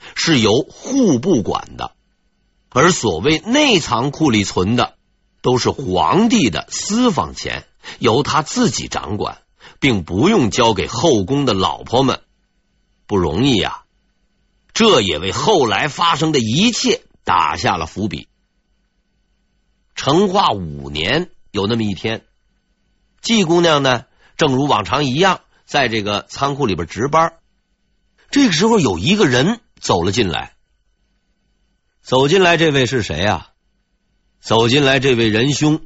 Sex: male